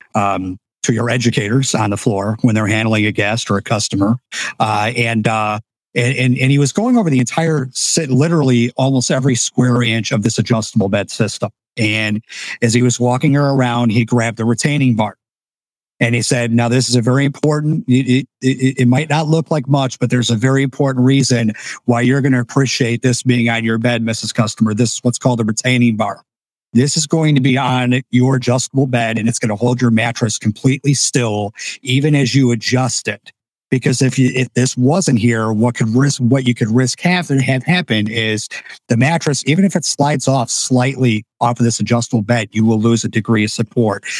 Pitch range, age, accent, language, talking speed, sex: 115-130 Hz, 50-69, American, English, 205 wpm, male